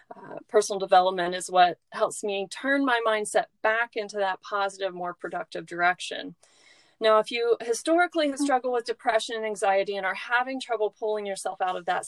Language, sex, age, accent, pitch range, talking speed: English, female, 30-49, American, 195-245 Hz, 180 wpm